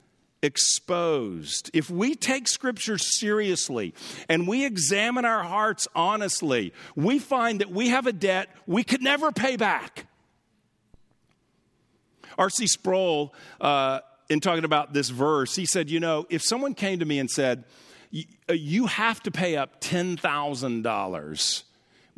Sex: male